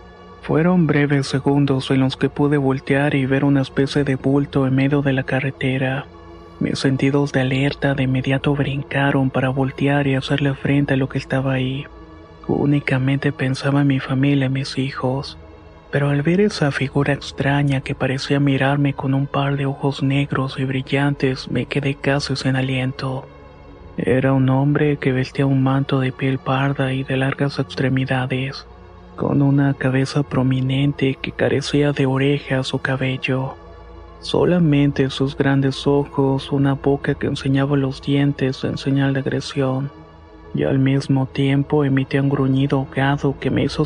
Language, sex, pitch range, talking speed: Spanish, male, 130-140 Hz, 155 wpm